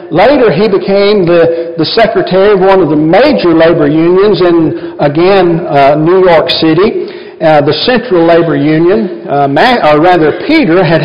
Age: 50-69